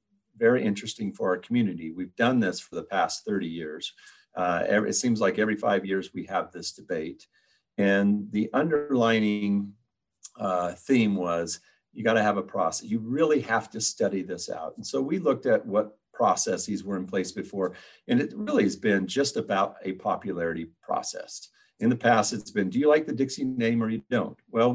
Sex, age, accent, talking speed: male, 50-69, American, 190 wpm